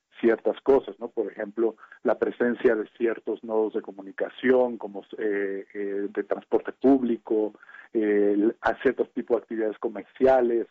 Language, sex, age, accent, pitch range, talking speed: Spanish, male, 40-59, Mexican, 110-140 Hz, 145 wpm